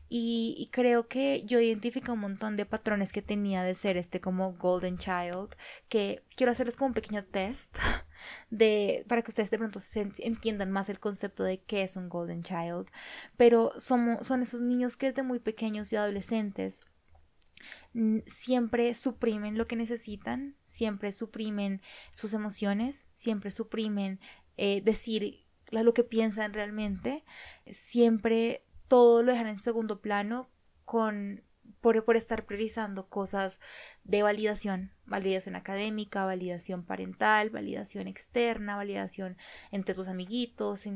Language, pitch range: Spanish, 195-235 Hz